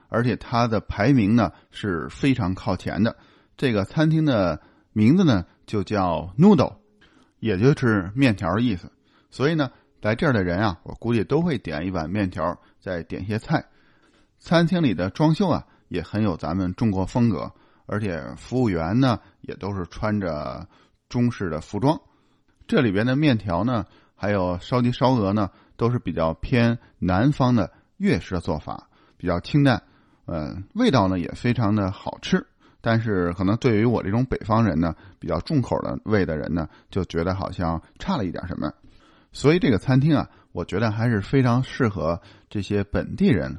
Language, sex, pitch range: Chinese, male, 95-125 Hz